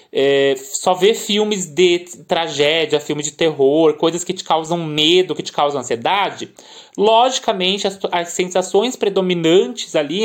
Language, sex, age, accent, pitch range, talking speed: Portuguese, male, 20-39, Brazilian, 175-220 Hz, 140 wpm